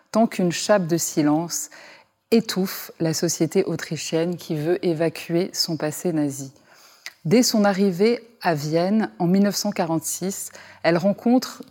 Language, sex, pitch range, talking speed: English, female, 160-200 Hz, 120 wpm